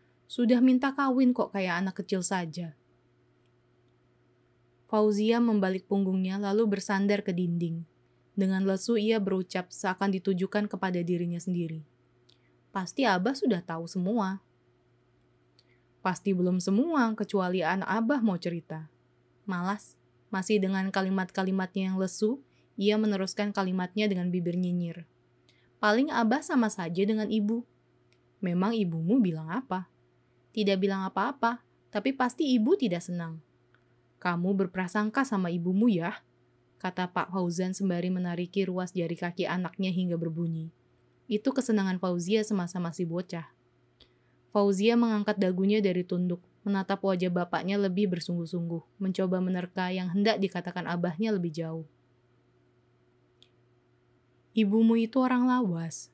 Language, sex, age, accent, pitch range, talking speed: Indonesian, female, 20-39, native, 175-210 Hz, 120 wpm